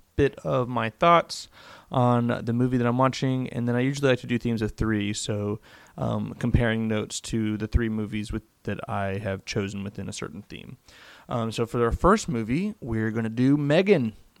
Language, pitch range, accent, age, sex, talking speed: English, 115-135 Hz, American, 20-39, male, 200 wpm